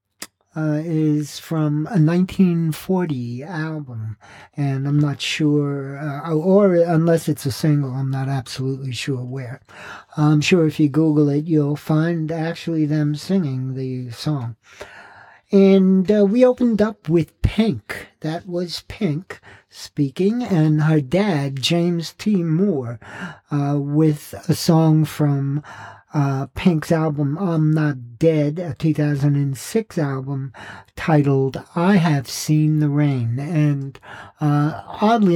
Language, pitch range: English, 125-160 Hz